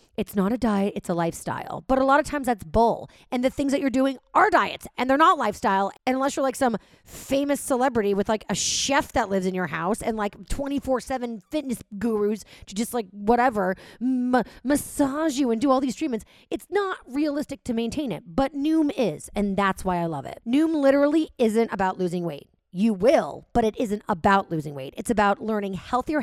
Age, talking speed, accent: 30-49, 210 wpm, American